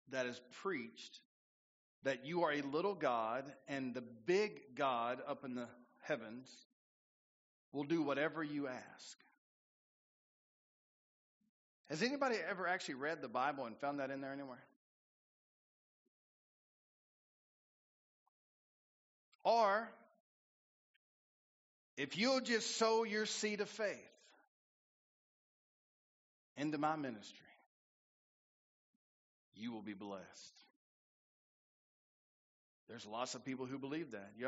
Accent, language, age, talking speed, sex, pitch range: American, English, 40-59, 105 wpm, male, 125-180 Hz